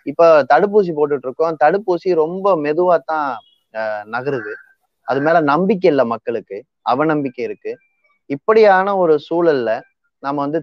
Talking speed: 120 wpm